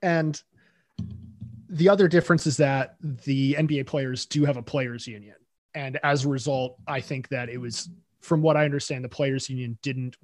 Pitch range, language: 125-150 Hz, English